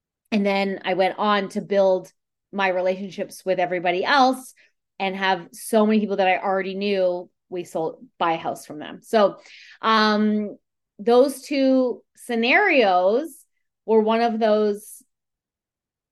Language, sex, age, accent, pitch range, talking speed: English, female, 30-49, American, 180-225 Hz, 140 wpm